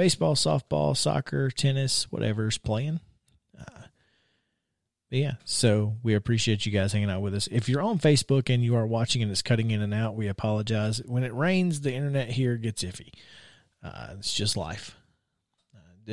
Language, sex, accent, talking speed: English, male, American, 175 wpm